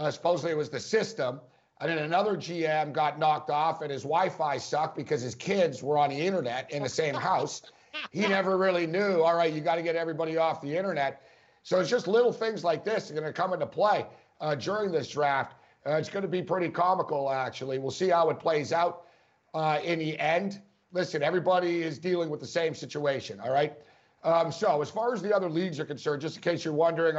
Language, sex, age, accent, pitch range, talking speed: English, male, 50-69, American, 150-180 Hz, 230 wpm